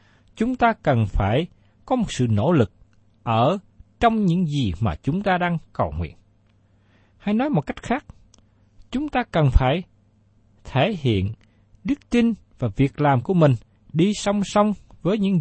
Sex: male